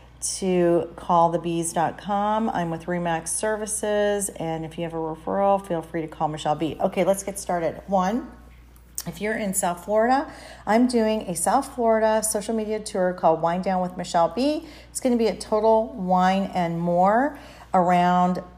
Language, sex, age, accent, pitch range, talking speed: English, female, 40-59, American, 175-220 Hz, 175 wpm